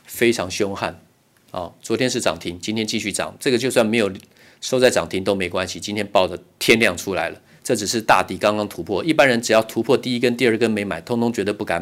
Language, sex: Chinese, male